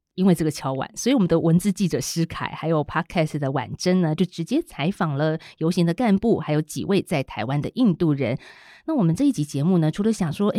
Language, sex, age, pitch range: Chinese, female, 30-49, 150-195 Hz